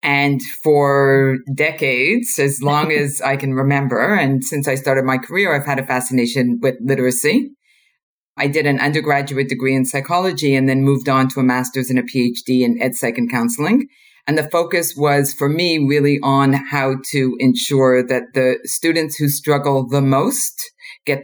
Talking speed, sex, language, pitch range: 175 wpm, female, English, 130-150 Hz